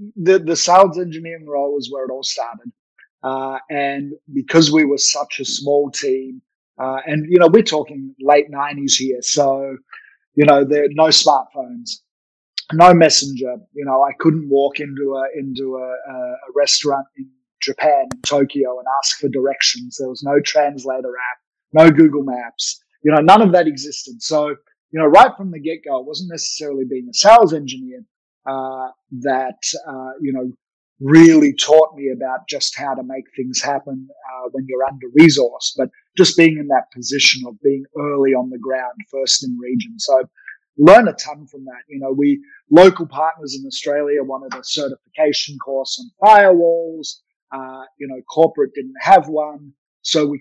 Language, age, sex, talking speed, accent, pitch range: English, 30-49, male, 175 wpm, Australian, 135-165 Hz